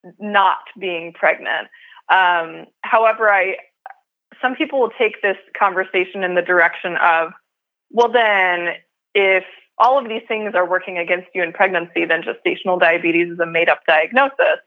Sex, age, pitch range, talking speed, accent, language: female, 20-39, 175-210 Hz, 145 wpm, American, English